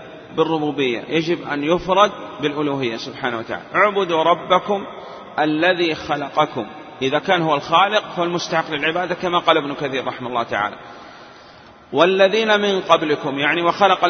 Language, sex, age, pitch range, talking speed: Arabic, male, 30-49, 150-180 Hz, 125 wpm